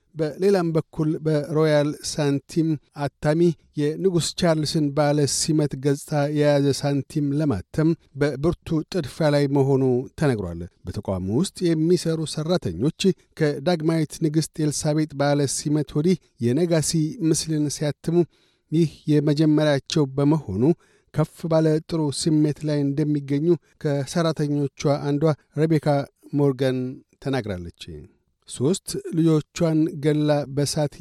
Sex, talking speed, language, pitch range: male, 95 wpm, Amharic, 140-160 Hz